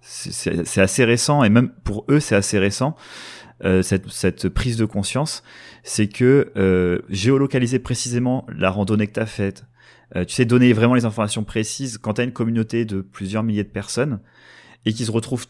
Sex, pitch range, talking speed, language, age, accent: male, 95-120 Hz, 185 wpm, French, 30-49, French